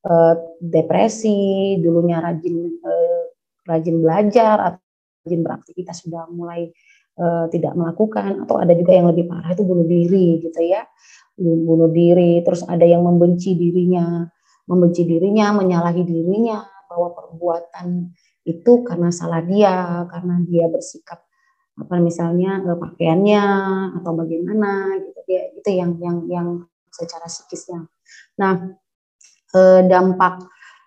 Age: 30-49